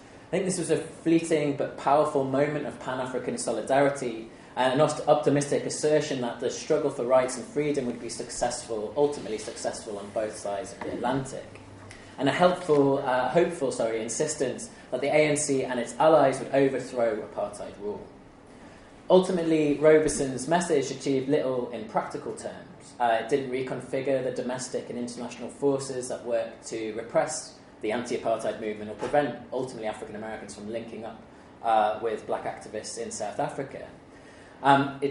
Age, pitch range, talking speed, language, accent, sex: 20-39, 115-145 Hz, 155 wpm, English, British, male